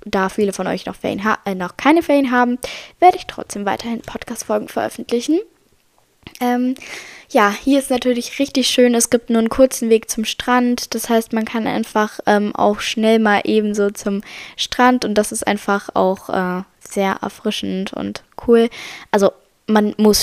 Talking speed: 170 wpm